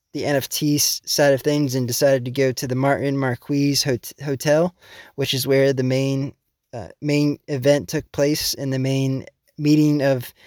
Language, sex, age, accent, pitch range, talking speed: English, male, 20-39, American, 135-155 Hz, 165 wpm